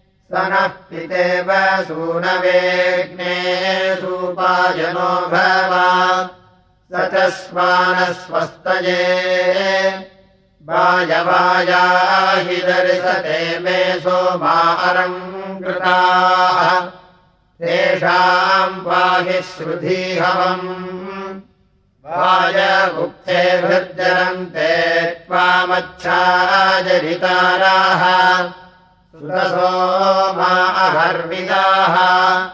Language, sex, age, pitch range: Russian, male, 50-69, 180-185 Hz